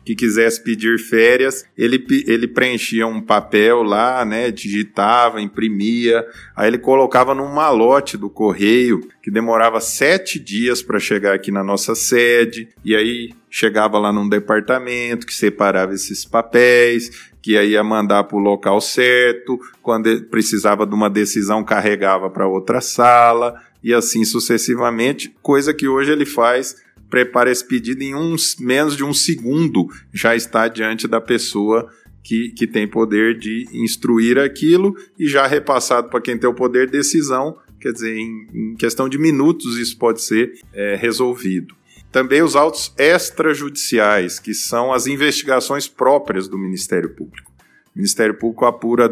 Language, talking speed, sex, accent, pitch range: Portuguese, 150 wpm, male, Brazilian, 105-125 Hz